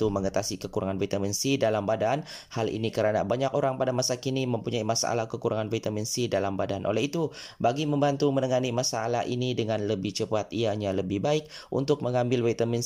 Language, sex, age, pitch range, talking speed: Malay, male, 20-39, 110-135 Hz, 175 wpm